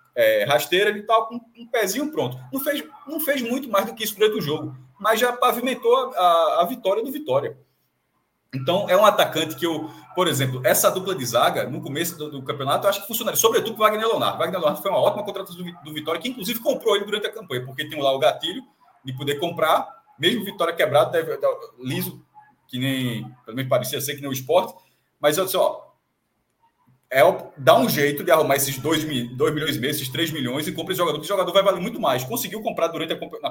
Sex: male